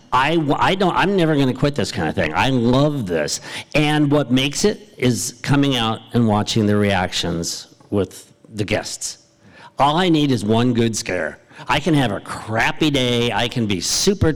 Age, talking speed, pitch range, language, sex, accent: 50-69, 190 wpm, 115-150 Hz, English, male, American